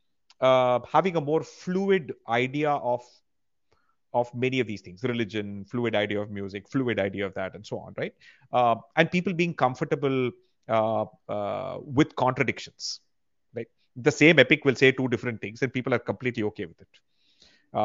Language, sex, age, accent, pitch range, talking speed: English, male, 30-49, Indian, 120-165 Hz, 170 wpm